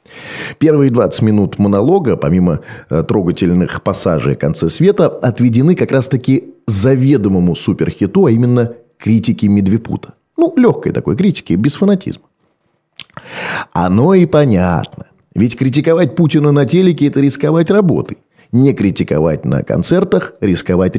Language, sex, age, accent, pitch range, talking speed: Russian, male, 30-49, native, 105-155 Hz, 115 wpm